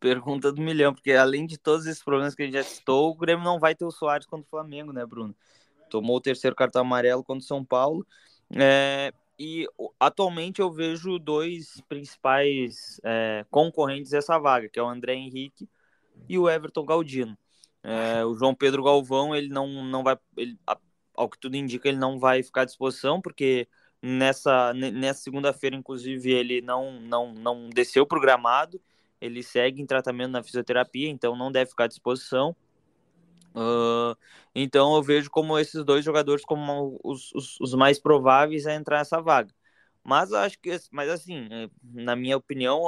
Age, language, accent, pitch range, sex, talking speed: 20-39, Portuguese, Brazilian, 125-150 Hz, male, 175 wpm